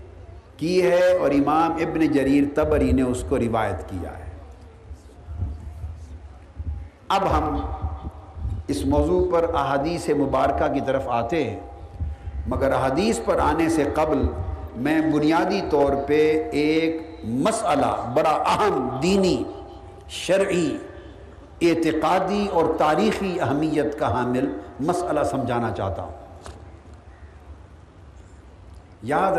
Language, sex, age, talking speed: Urdu, male, 50-69, 105 wpm